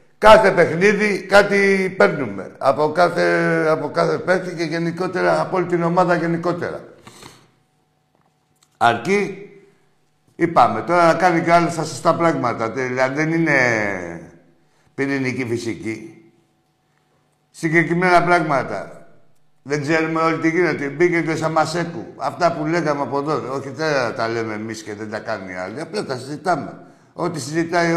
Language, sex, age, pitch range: Greek, male, 60-79, 140-180 Hz